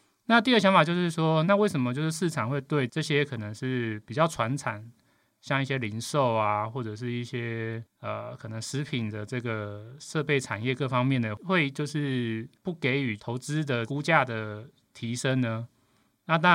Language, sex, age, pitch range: Chinese, male, 30-49, 115-145 Hz